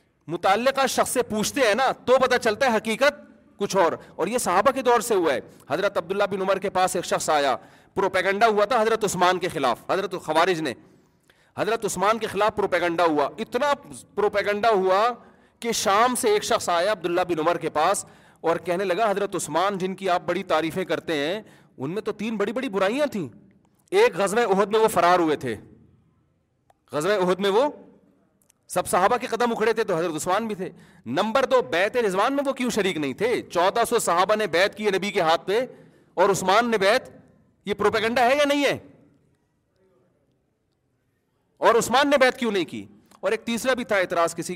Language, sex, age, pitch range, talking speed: Urdu, male, 40-59, 170-225 Hz, 200 wpm